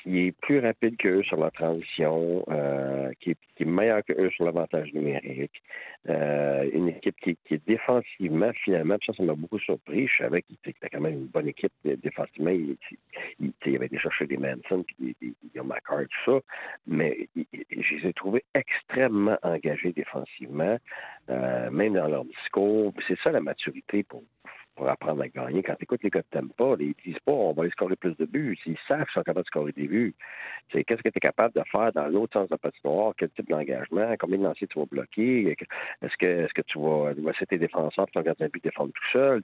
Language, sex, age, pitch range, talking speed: French, male, 50-69, 75-105 Hz, 230 wpm